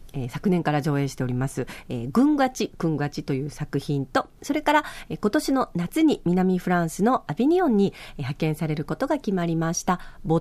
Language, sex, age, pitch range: Japanese, female, 40-59, 150-235 Hz